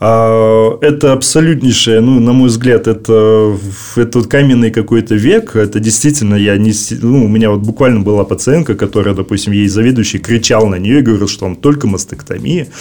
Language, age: Russian, 20-39